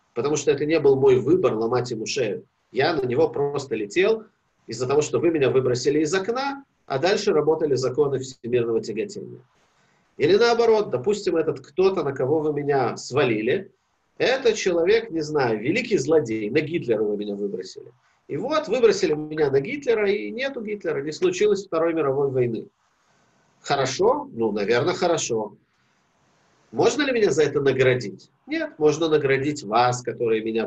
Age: 40-59